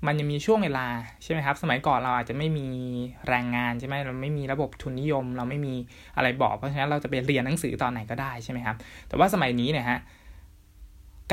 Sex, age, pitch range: male, 20-39, 120-155 Hz